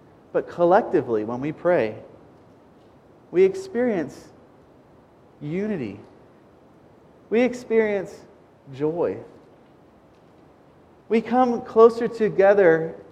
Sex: male